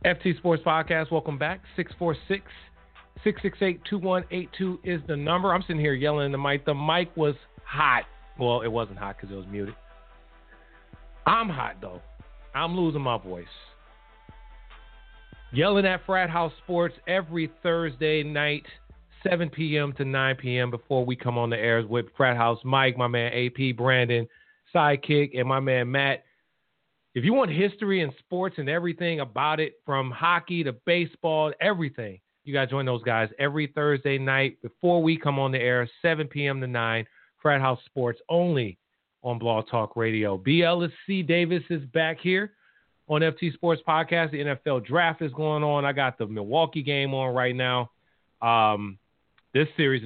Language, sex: English, male